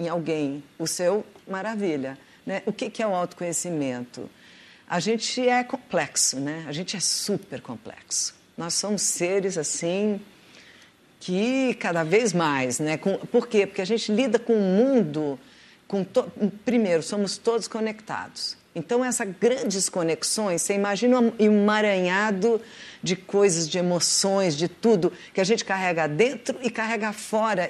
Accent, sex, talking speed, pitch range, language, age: Brazilian, female, 145 wpm, 175-230 Hz, Portuguese, 50-69